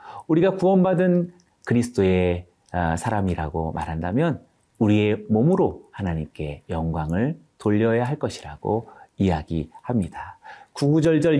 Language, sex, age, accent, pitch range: Korean, male, 30-49, native, 90-150 Hz